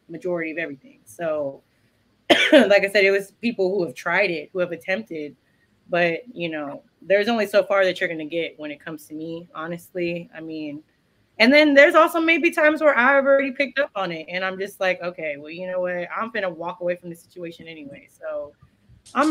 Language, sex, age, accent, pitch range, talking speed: English, female, 20-39, American, 175-250 Hz, 210 wpm